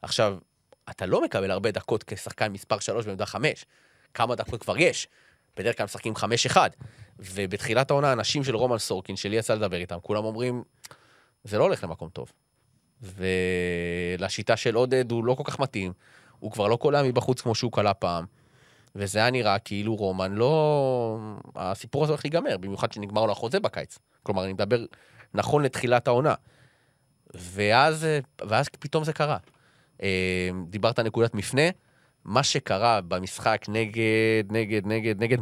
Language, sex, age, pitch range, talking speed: Hebrew, male, 20-39, 100-135 Hz, 150 wpm